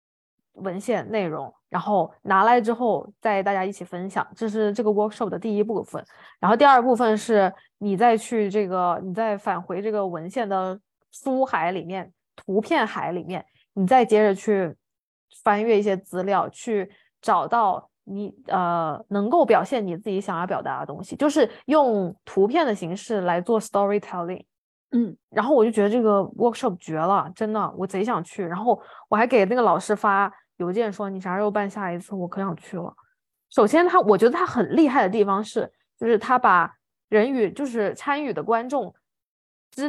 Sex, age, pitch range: female, 20-39, 190-235 Hz